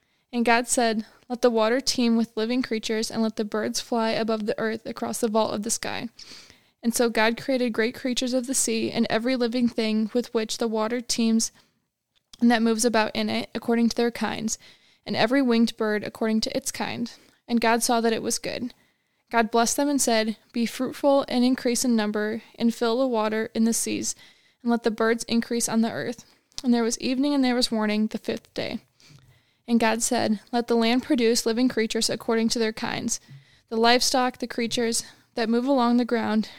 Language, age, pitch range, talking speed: English, 20-39, 220-245 Hz, 205 wpm